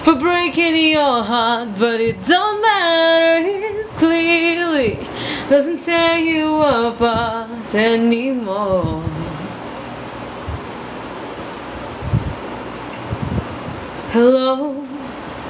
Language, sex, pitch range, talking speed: English, female, 230-325 Hz, 60 wpm